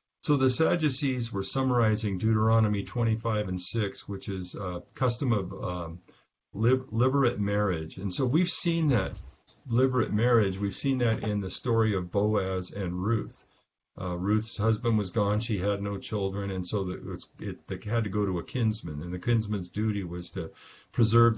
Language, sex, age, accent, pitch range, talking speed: English, male, 50-69, American, 95-115 Hz, 180 wpm